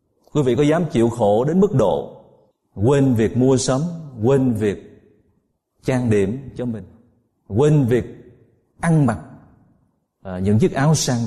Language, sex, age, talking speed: Vietnamese, male, 30-49, 150 wpm